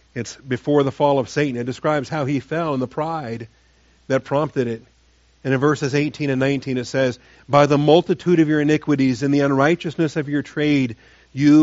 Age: 40-59